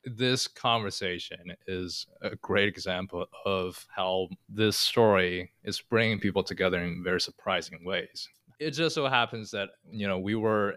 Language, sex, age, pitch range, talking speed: English, male, 20-39, 95-115 Hz, 150 wpm